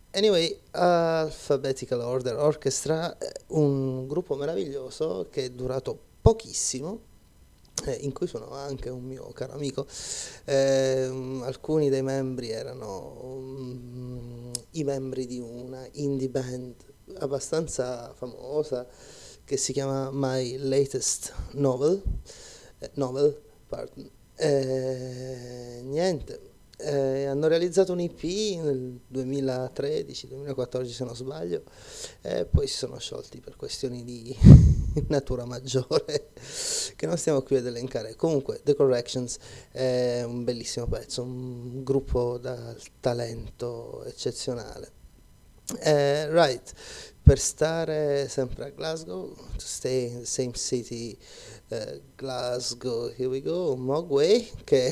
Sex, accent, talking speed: male, native, 110 wpm